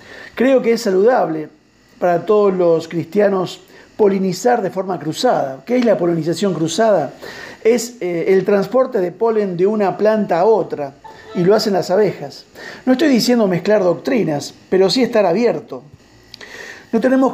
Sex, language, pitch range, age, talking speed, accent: male, Spanish, 175-220 Hz, 50-69, 150 wpm, Argentinian